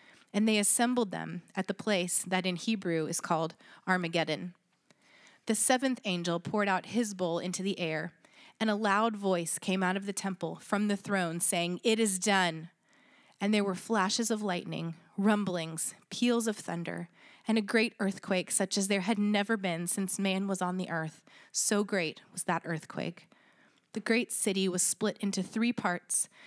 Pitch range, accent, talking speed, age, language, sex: 180-210 Hz, American, 175 wpm, 30-49, English, female